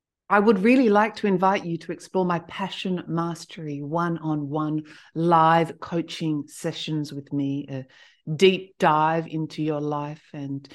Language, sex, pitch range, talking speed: English, female, 150-185 Hz, 140 wpm